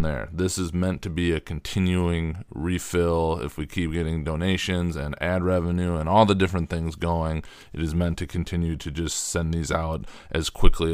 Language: English